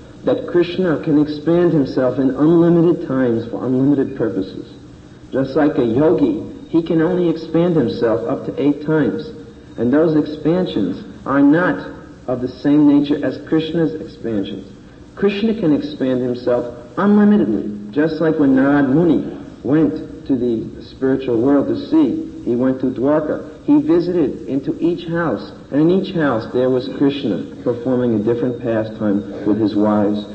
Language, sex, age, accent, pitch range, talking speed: English, male, 50-69, American, 120-170 Hz, 150 wpm